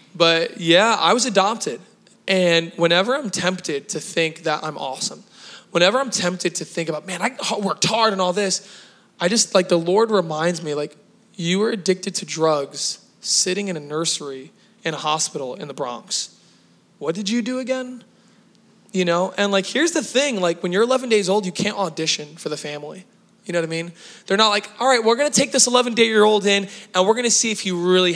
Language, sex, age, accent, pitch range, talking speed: English, male, 20-39, American, 160-205 Hz, 210 wpm